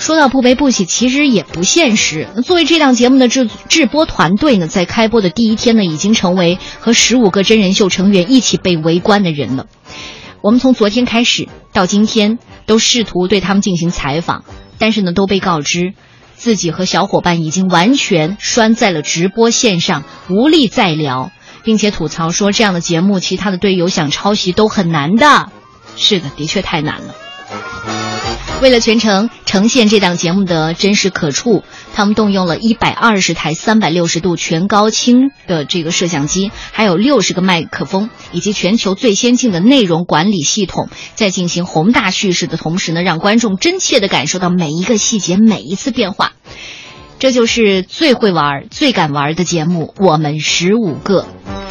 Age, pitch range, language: 20-39, 170-225 Hz, Chinese